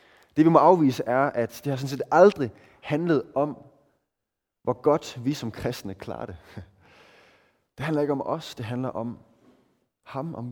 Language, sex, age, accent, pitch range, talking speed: Danish, male, 20-39, native, 105-145 Hz, 170 wpm